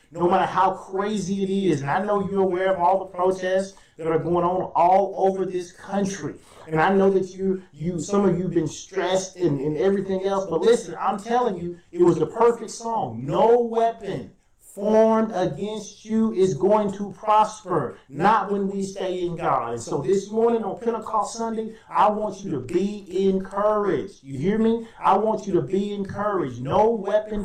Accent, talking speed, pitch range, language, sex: American, 190 wpm, 165-195 Hz, English, male